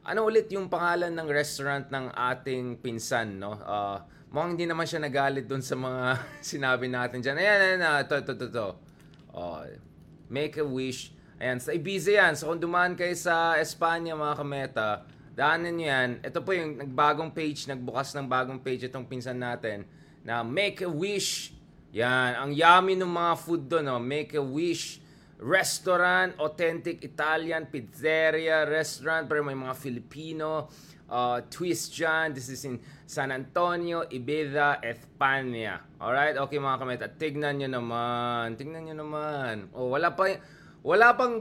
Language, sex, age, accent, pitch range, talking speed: English, male, 20-39, Filipino, 130-170 Hz, 155 wpm